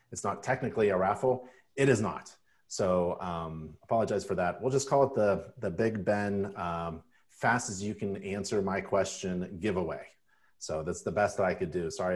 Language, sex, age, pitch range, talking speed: English, male, 40-59, 90-130 Hz, 190 wpm